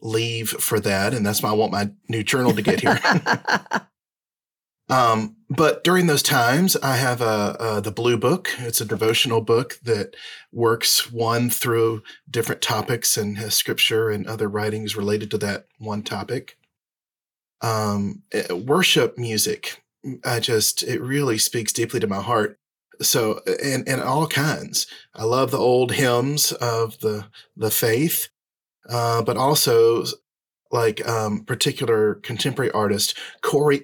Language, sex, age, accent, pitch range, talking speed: English, male, 40-59, American, 110-140 Hz, 145 wpm